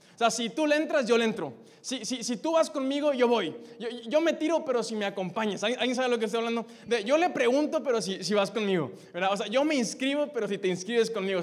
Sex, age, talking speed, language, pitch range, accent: male, 20-39, 270 wpm, Spanish, 205-245 Hz, Mexican